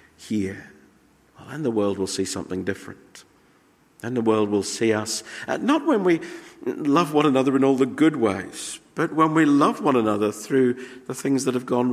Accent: British